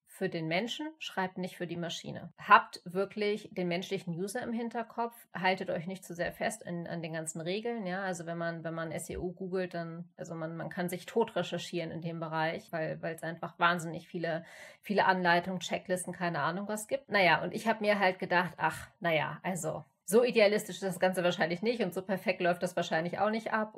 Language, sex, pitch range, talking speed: German, female, 175-195 Hz, 210 wpm